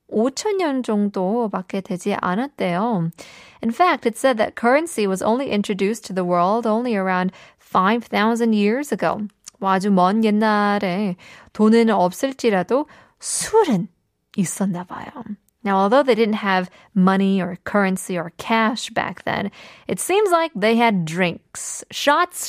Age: 20-39